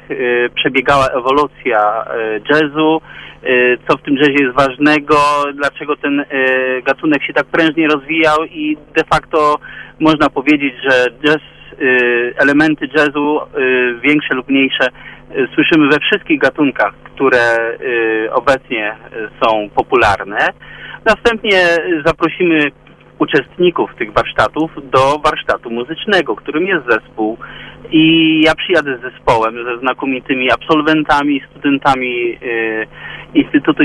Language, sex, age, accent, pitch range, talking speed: Polish, male, 40-59, native, 125-160 Hz, 100 wpm